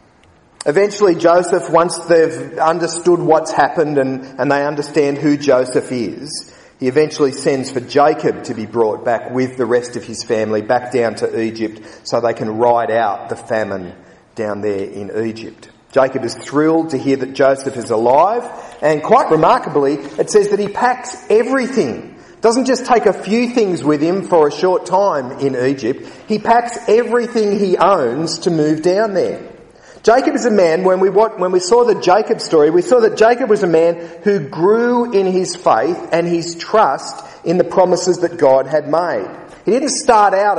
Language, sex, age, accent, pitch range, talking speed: English, male, 40-59, Australian, 145-220 Hz, 180 wpm